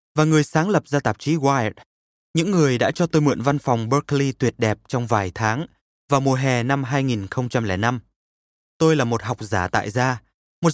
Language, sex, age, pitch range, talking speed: Vietnamese, male, 20-39, 115-155 Hz, 195 wpm